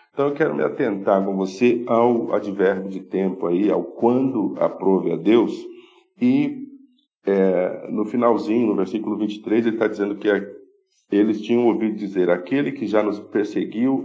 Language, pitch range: Portuguese, 95-120 Hz